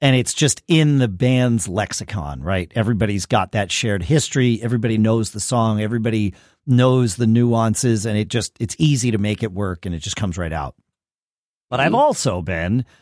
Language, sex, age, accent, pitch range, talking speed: English, male, 40-59, American, 110-150 Hz, 185 wpm